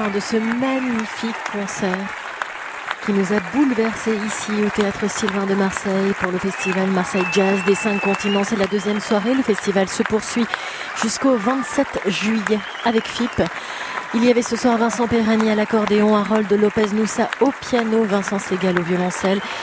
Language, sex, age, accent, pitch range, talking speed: French, female, 30-49, French, 200-230 Hz, 160 wpm